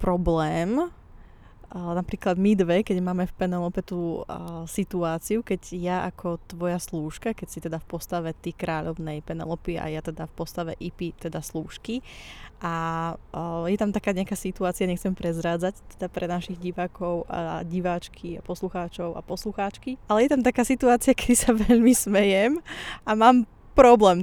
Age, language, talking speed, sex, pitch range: 20-39, Slovak, 155 wpm, female, 170-205 Hz